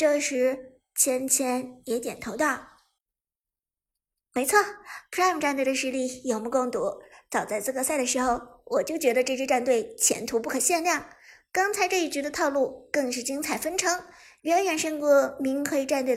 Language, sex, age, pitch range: Chinese, male, 50-69, 235-305 Hz